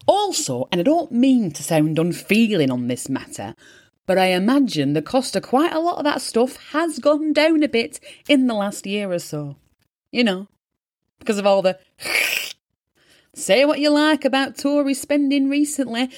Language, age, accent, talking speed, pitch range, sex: English, 30-49, British, 180 wpm, 190-295 Hz, female